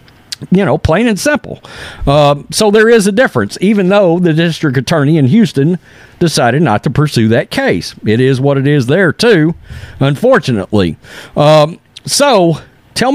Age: 50-69